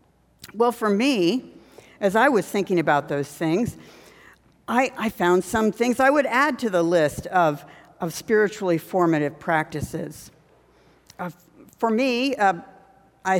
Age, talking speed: 60-79, 140 wpm